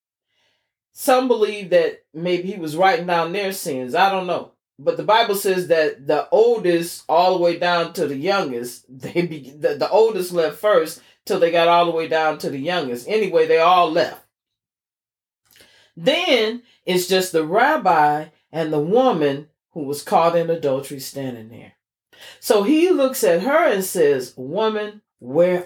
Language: English